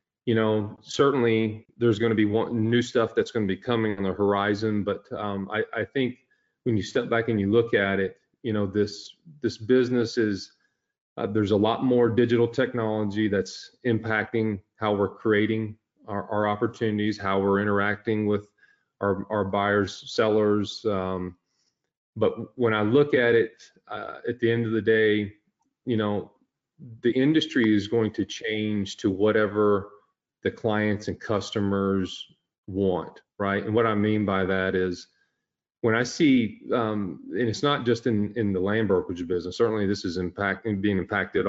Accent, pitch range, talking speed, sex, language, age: American, 100-115 Hz, 170 wpm, male, English, 30-49